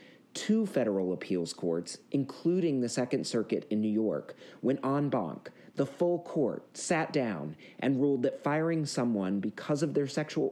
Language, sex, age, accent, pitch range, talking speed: English, male, 40-59, American, 100-150 Hz, 160 wpm